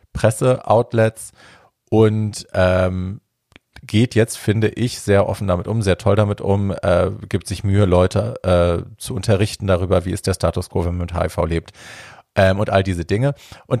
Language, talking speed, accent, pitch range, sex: German, 175 wpm, German, 85-110 Hz, male